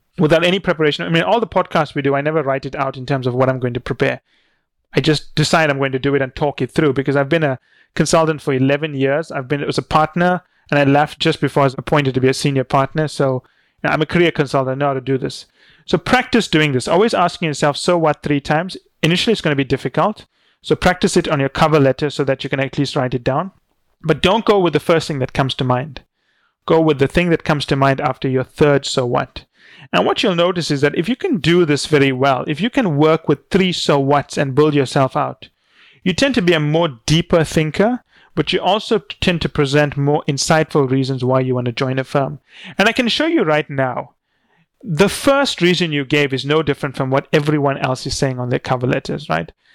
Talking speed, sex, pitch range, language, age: 245 wpm, male, 140-175 Hz, English, 30-49